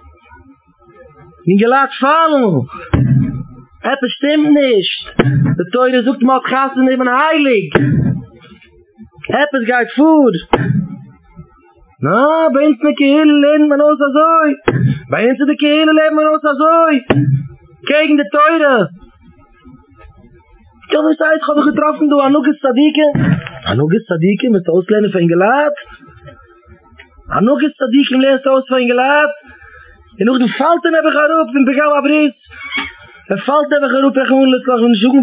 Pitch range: 180-285 Hz